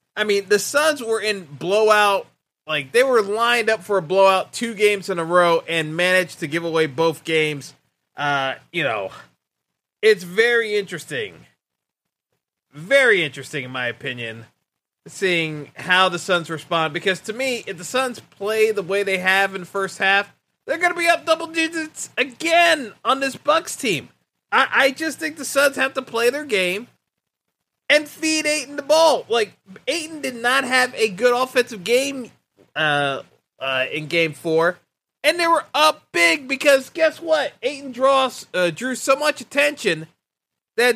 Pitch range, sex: 180-270 Hz, male